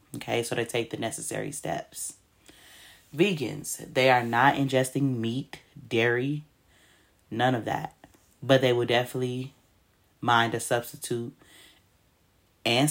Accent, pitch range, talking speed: American, 115-140 Hz, 115 wpm